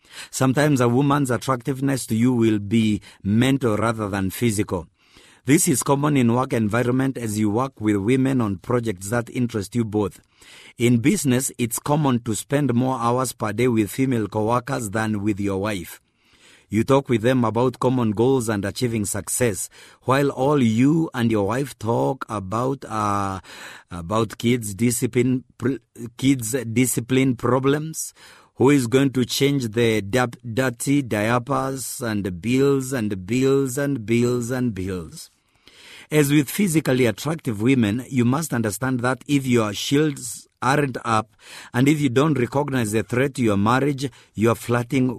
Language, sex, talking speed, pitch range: English, male, 150 wpm, 110-135 Hz